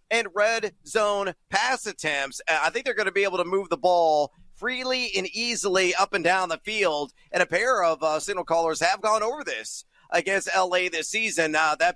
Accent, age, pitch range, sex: American, 40-59, 165-220 Hz, male